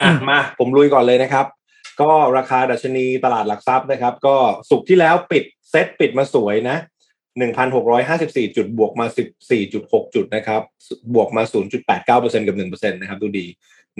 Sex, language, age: male, Thai, 20-39